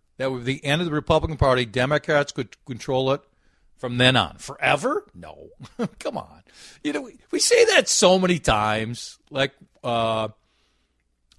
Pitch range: 90-135 Hz